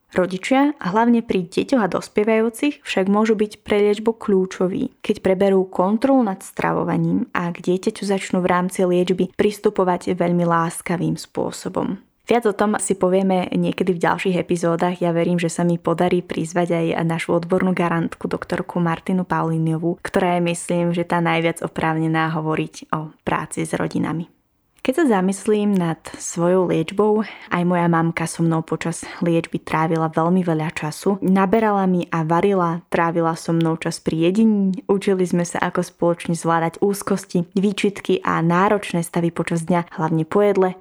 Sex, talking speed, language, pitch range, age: female, 155 wpm, Slovak, 170-200 Hz, 20-39